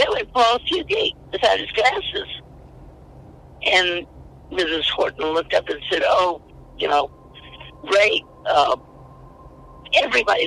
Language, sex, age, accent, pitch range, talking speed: English, female, 60-79, American, 170-245 Hz, 115 wpm